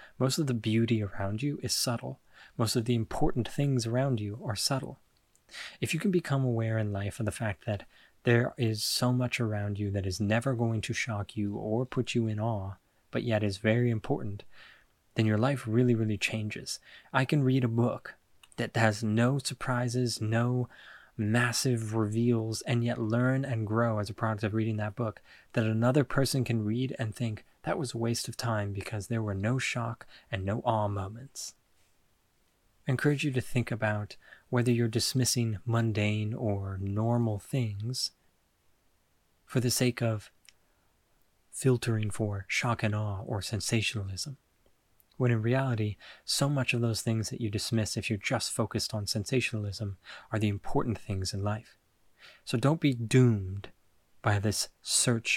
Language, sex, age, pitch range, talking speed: English, male, 20-39, 105-120 Hz, 170 wpm